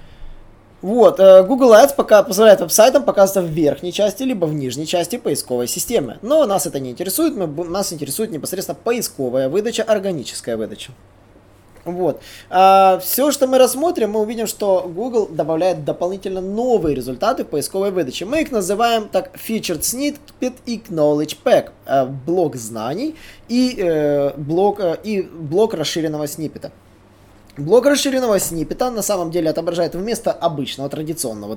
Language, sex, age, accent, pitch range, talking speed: Russian, male, 20-39, native, 145-220 Hz, 135 wpm